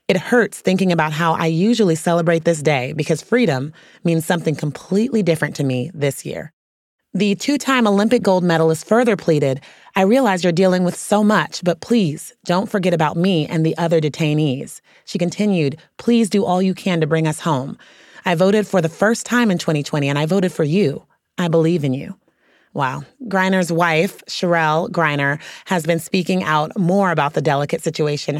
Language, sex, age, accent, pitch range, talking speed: English, female, 30-49, American, 155-190 Hz, 180 wpm